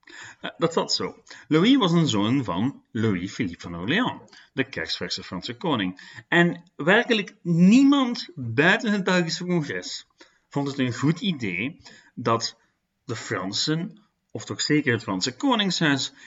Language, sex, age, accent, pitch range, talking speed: Dutch, male, 40-59, Dutch, 120-180 Hz, 135 wpm